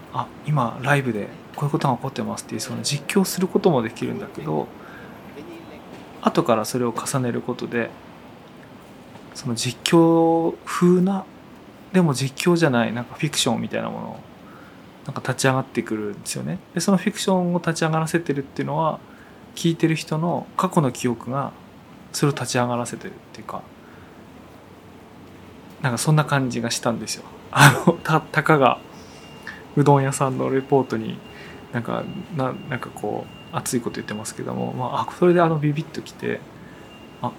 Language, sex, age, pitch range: Japanese, male, 20-39, 120-165 Hz